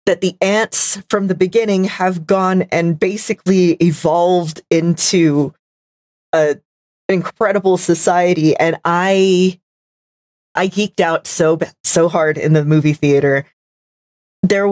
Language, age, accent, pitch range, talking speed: English, 40-59, American, 150-185 Hz, 115 wpm